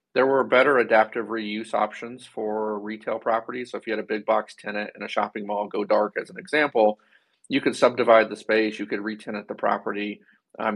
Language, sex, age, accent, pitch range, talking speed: English, male, 40-59, American, 105-115 Hz, 205 wpm